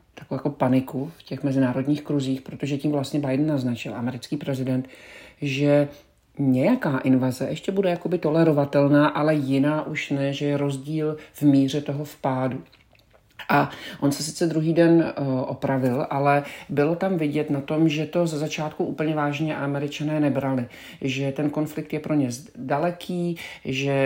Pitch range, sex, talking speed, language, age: 130-150 Hz, male, 145 wpm, Czech, 50-69